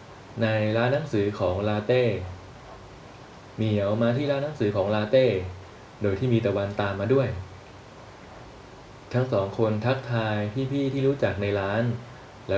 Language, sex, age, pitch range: Thai, male, 20-39, 100-125 Hz